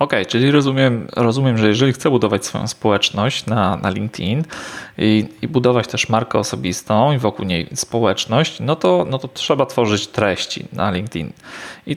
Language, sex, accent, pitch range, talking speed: Polish, male, native, 105-125 Hz, 165 wpm